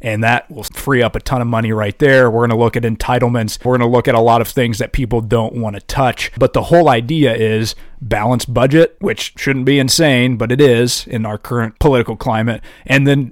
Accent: American